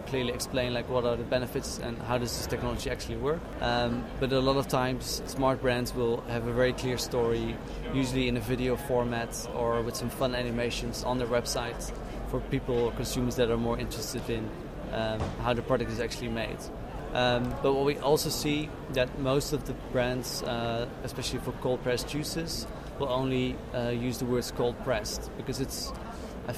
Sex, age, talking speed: male, 20-39, 190 wpm